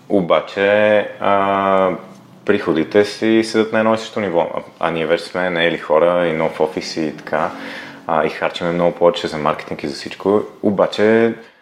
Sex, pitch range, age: male, 80-105 Hz, 30-49